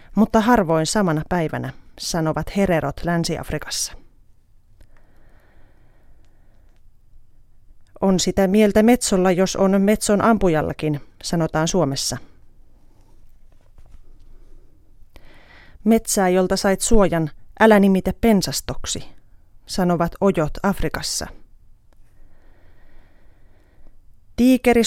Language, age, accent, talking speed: Finnish, 30-49, native, 70 wpm